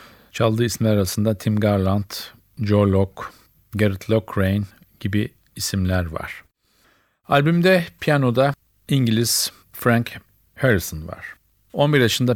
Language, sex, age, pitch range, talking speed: Turkish, male, 50-69, 100-120 Hz, 95 wpm